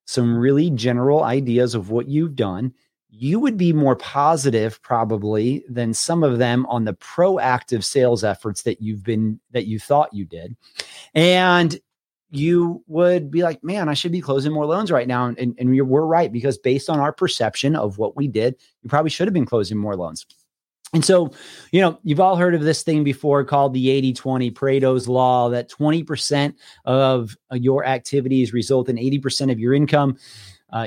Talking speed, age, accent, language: 185 wpm, 30-49, American, English